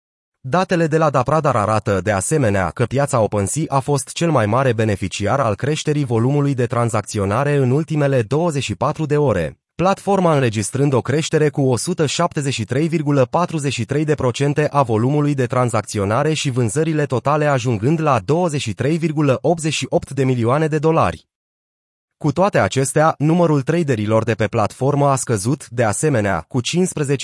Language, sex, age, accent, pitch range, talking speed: Romanian, male, 30-49, native, 115-155 Hz, 130 wpm